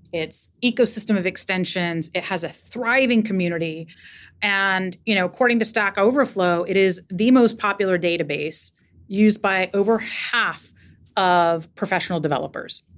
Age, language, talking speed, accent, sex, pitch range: 30-49, English, 135 wpm, American, female, 175-220 Hz